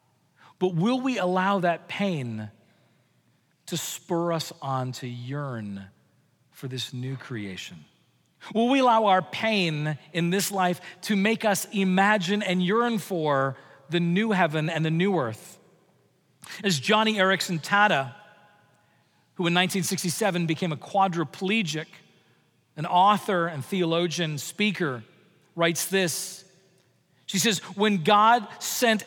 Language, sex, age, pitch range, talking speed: English, male, 40-59, 155-205 Hz, 125 wpm